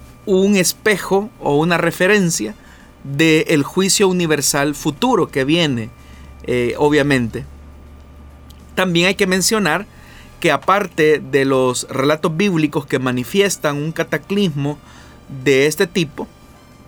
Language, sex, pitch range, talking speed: Spanish, male, 130-180 Hz, 110 wpm